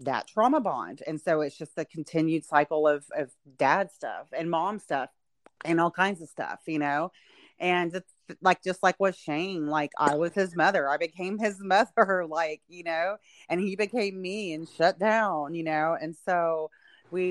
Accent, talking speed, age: American, 190 wpm, 30-49